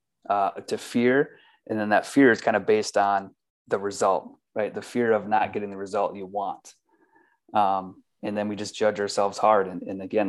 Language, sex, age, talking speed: English, male, 20-39, 205 wpm